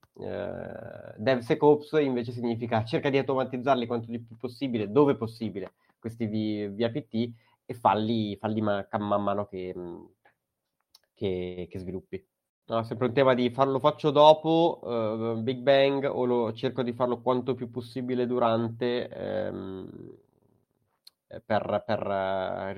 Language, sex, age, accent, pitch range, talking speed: Italian, male, 20-39, native, 105-125 Hz, 140 wpm